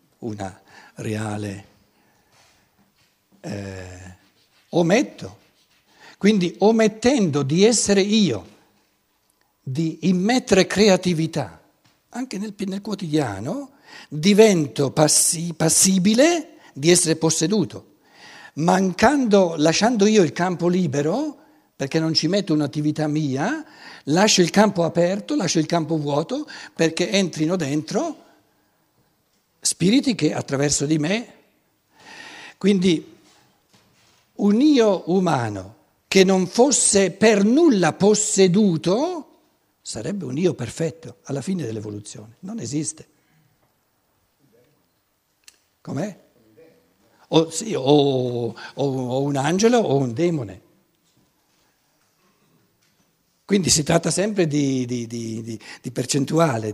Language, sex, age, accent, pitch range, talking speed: Italian, male, 60-79, native, 140-205 Hz, 95 wpm